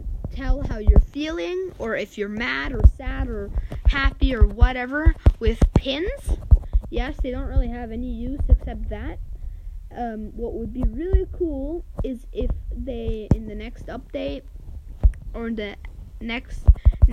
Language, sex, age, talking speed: Kannada, female, 10-29, 135 wpm